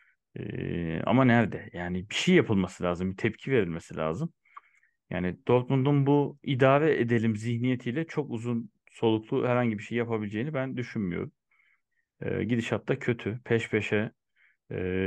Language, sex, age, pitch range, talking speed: Turkish, male, 40-59, 95-120 Hz, 135 wpm